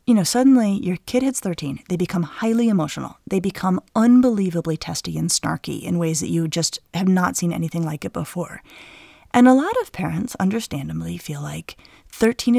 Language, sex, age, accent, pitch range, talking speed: English, female, 30-49, American, 175-250 Hz, 180 wpm